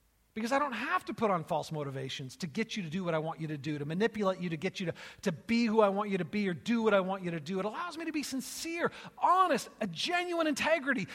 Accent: American